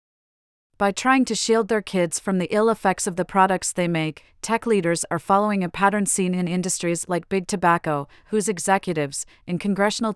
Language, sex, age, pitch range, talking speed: English, female, 30-49, 170-200 Hz, 185 wpm